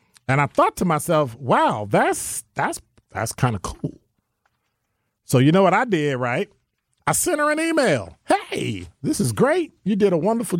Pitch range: 110-150 Hz